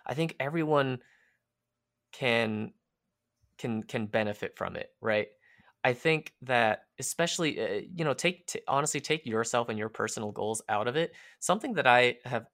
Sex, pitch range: male, 110-140 Hz